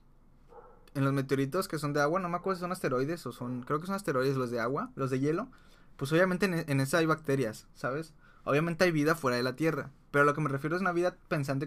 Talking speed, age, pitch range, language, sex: 255 wpm, 20-39, 130-160 Hz, Spanish, male